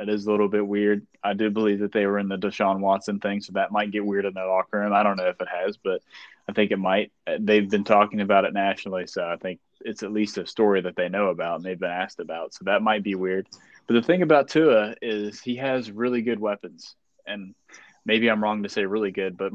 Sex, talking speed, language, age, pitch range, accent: male, 260 wpm, English, 20-39, 100-115 Hz, American